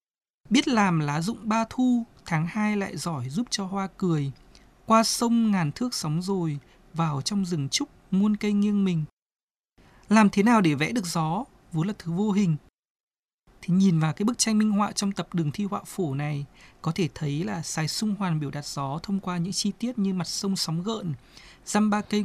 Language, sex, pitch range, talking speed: Vietnamese, male, 160-210 Hz, 210 wpm